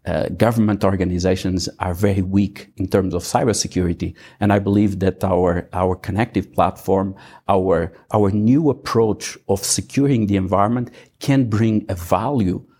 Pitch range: 95-120 Hz